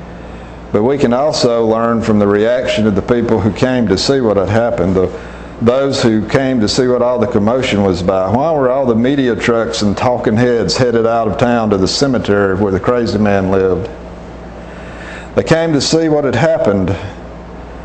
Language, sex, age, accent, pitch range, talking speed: English, male, 50-69, American, 95-125 Hz, 190 wpm